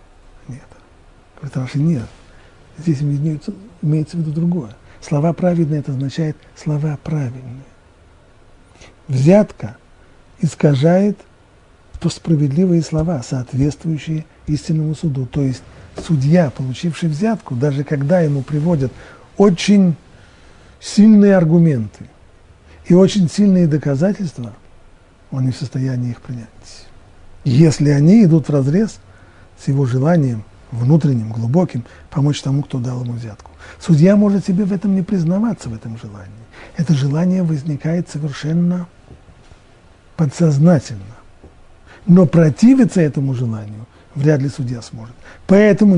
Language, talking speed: Russian, 110 wpm